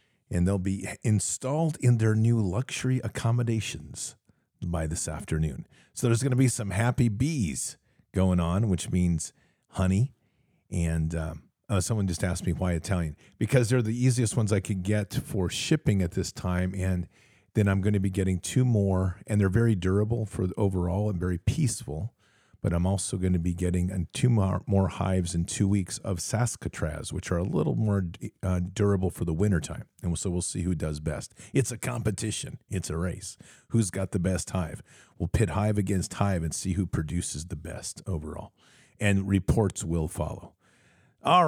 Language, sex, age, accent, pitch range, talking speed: English, male, 50-69, American, 90-115 Hz, 180 wpm